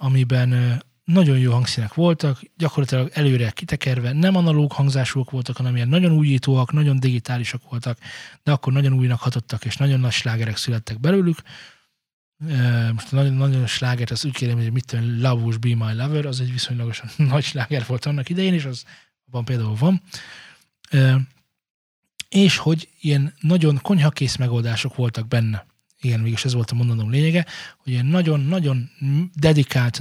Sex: male